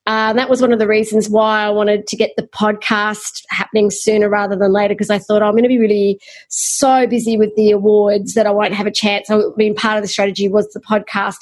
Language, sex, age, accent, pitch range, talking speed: English, female, 30-49, Australian, 210-245 Hz, 245 wpm